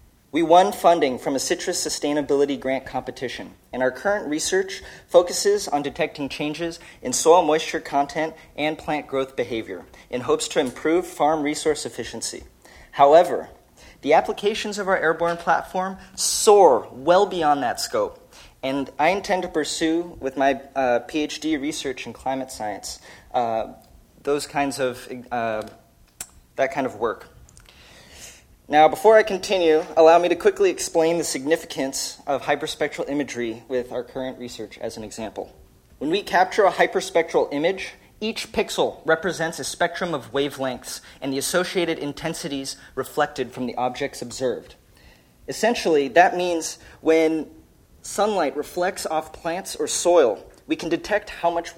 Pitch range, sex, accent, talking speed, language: 135-180 Hz, male, American, 145 wpm, English